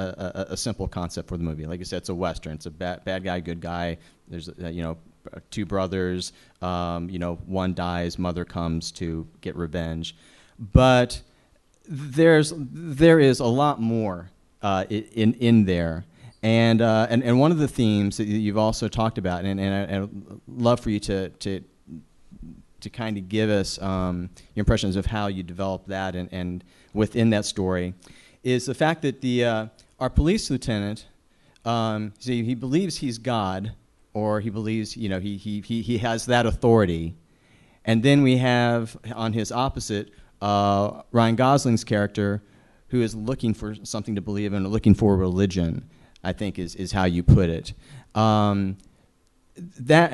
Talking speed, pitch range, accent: 175 wpm, 90-120 Hz, American